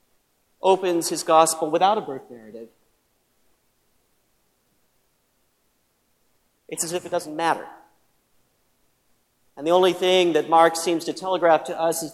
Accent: American